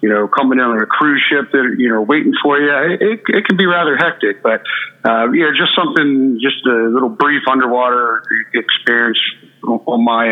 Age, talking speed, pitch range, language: 50-69, 215 wpm, 115-130 Hz, English